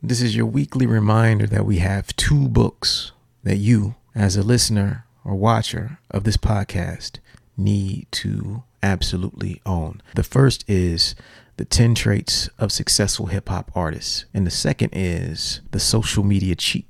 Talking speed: 155 wpm